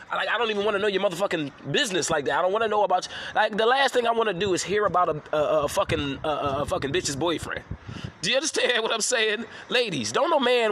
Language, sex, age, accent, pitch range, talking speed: English, male, 20-39, American, 160-230 Hz, 275 wpm